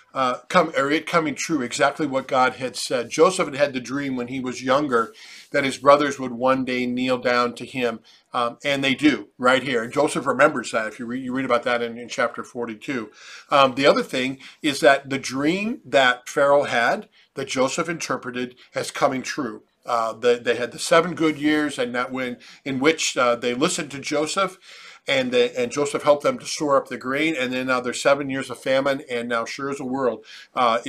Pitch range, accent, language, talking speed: 125-155 Hz, American, English, 220 wpm